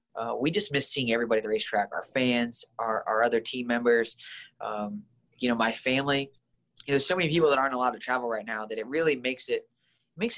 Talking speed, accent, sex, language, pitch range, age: 230 wpm, American, male, English, 115-135 Hz, 20-39